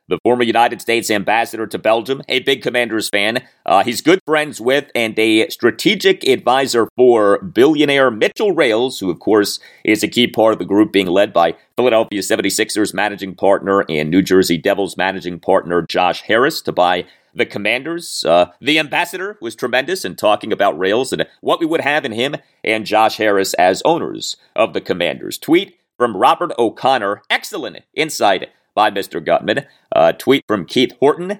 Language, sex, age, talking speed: English, male, 40-59, 175 wpm